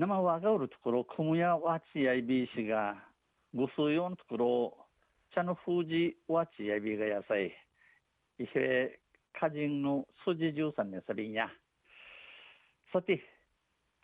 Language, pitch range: Japanese, 120-160 Hz